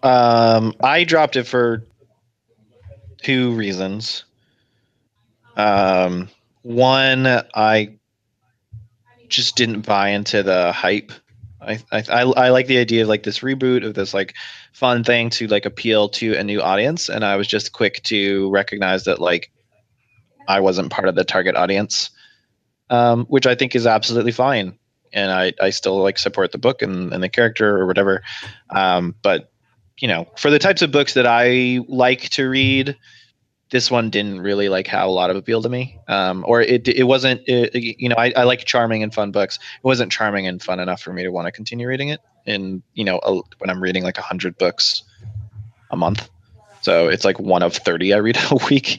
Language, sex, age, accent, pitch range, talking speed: English, male, 20-39, American, 100-125 Hz, 185 wpm